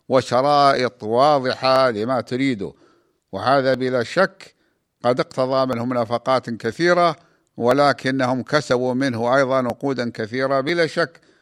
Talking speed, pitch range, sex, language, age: 105 wpm, 120-135 Hz, male, Arabic, 50-69